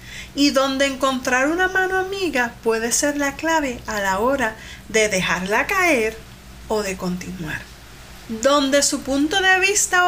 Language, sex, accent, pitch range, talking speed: Spanish, female, American, 205-290 Hz, 150 wpm